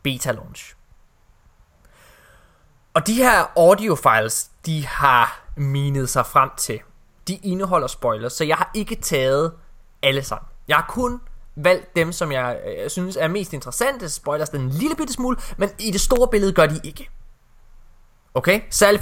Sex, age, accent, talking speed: male, 20-39, native, 155 wpm